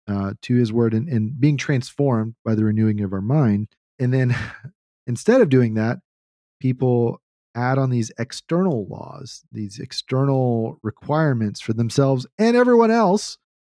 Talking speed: 150 wpm